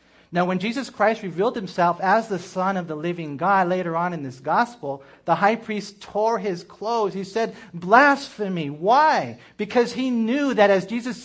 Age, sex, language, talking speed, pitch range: 40-59, male, English, 180 wpm, 155-205 Hz